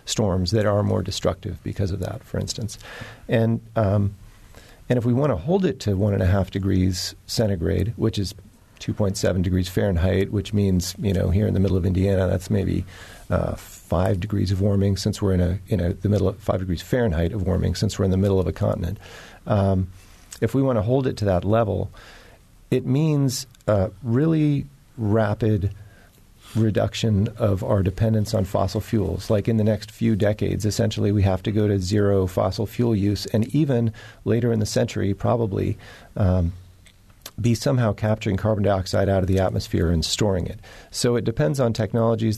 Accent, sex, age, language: American, male, 40-59, English